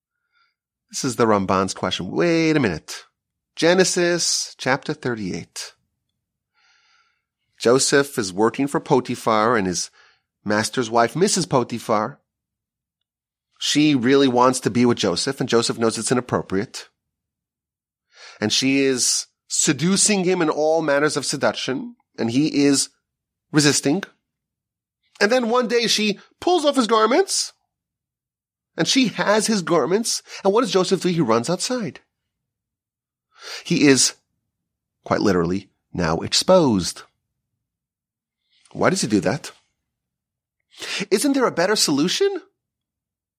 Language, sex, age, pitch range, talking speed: English, male, 30-49, 115-195 Hz, 120 wpm